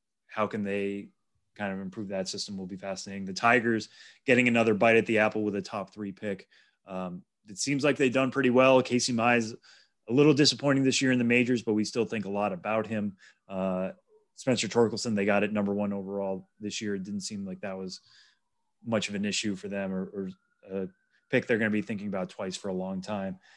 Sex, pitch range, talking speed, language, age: male, 105-130 Hz, 225 wpm, English, 30-49